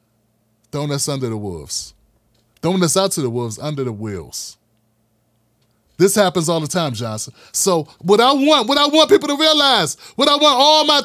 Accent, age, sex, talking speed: American, 30-49, male, 190 wpm